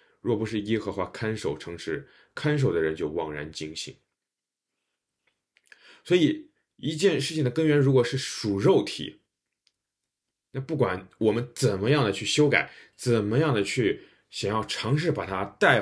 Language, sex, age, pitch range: Chinese, male, 20-39, 110-150 Hz